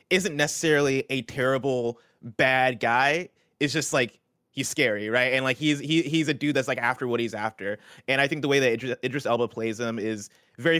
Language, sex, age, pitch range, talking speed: English, male, 20-39, 115-140 Hz, 210 wpm